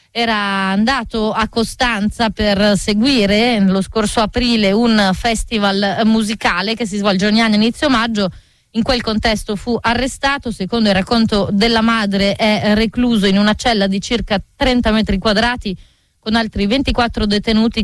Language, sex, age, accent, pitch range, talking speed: Italian, female, 30-49, native, 200-230 Hz, 150 wpm